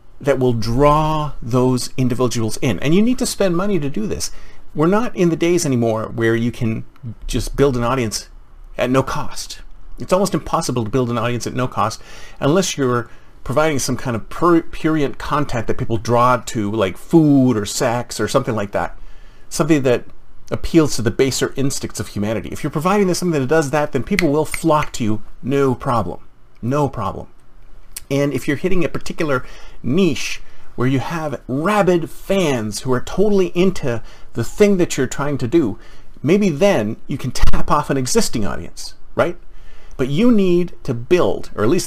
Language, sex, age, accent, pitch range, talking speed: English, male, 40-59, American, 115-160 Hz, 185 wpm